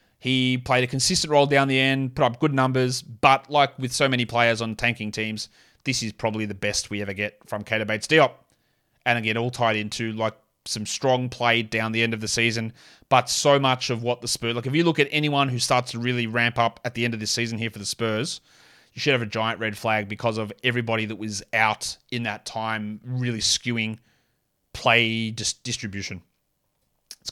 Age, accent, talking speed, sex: 30-49, Australian, 215 wpm, male